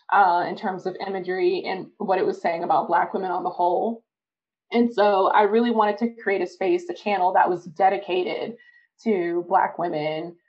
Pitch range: 185-220 Hz